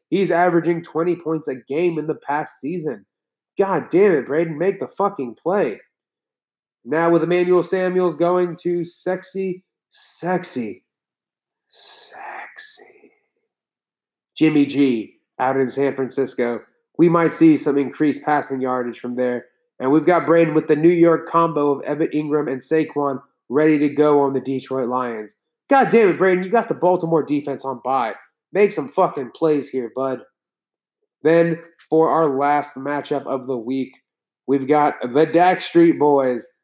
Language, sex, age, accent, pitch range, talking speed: English, male, 30-49, American, 140-180 Hz, 155 wpm